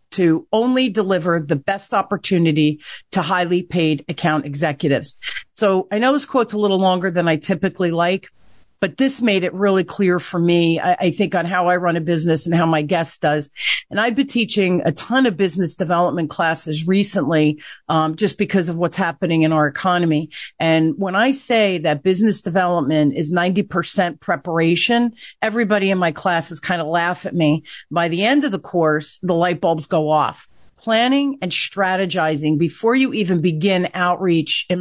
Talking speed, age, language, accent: 180 wpm, 40-59, English, American